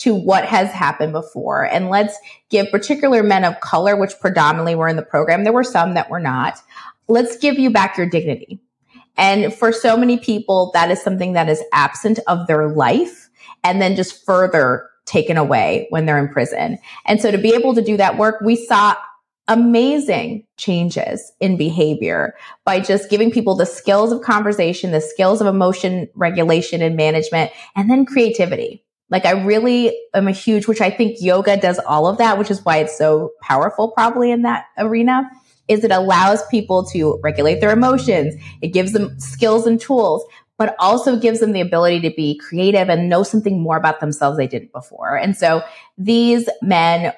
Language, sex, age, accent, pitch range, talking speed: English, female, 30-49, American, 170-230 Hz, 185 wpm